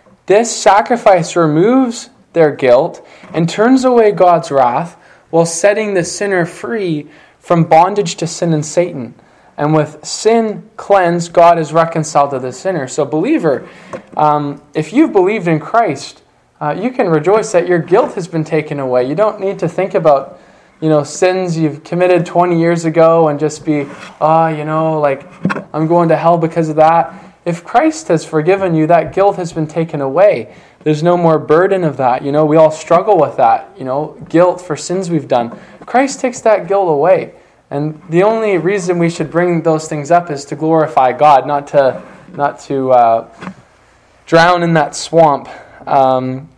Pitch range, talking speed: 150-185 Hz, 180 wpm